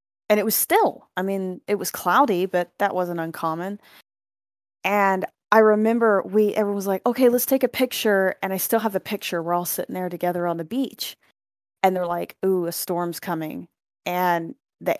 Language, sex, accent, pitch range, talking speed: English, female, American, 175-265 Hz, 190 wpm